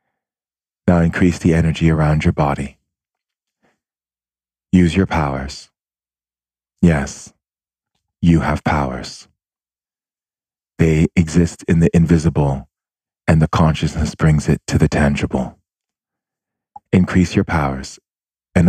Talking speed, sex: 100 wpm, male